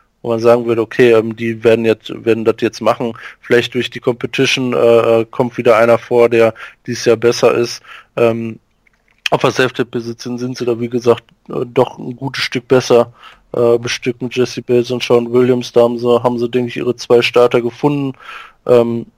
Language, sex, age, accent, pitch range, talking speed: German, male, 20-39, German, 115-125 Hz, 190 wpm